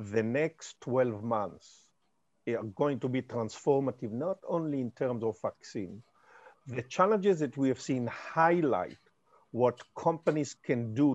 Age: 50-69